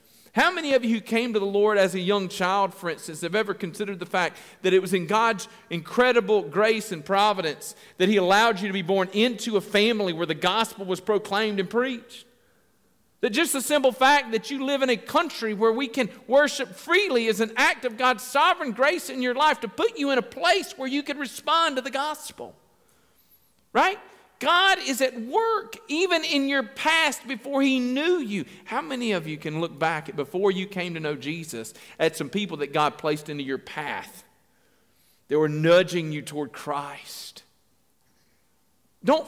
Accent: American